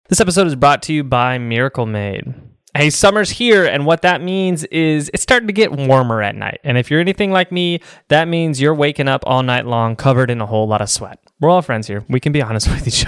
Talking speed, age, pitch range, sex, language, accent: 250 wpm, 20-39, 125-170 Hz, male, English, American